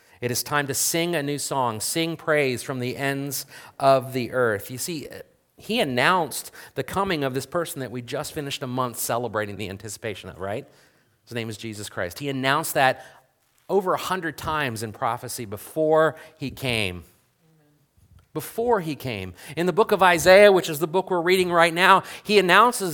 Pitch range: 125-180 Hz